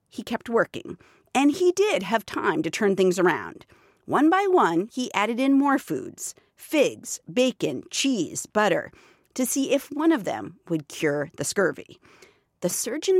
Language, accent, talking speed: English, American, 155 wpm